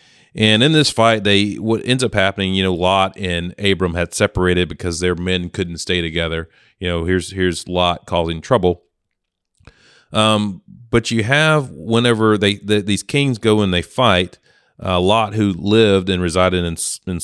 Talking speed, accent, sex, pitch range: 175 wpm, American, male, 90-110 Hz